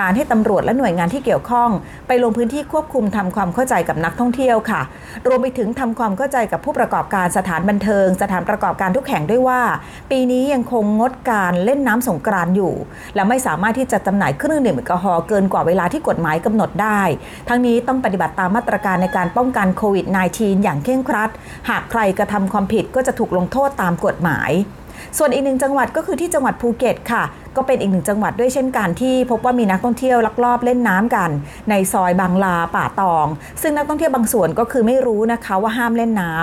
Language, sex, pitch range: Thai, female, 190-245 Hz